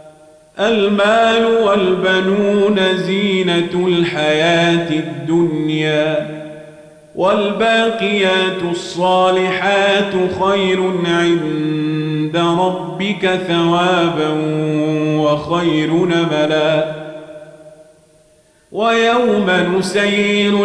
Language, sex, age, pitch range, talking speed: Arabic, male, 40-59, 155-205 Hz, 45 wpm